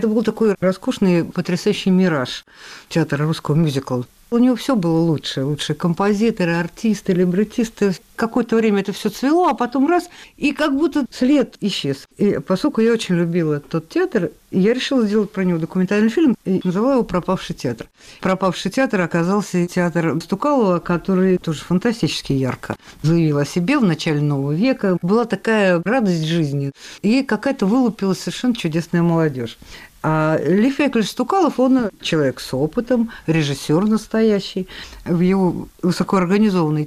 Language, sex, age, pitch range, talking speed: Russian, female, 50-69, 155-215 Hz, 145 wpm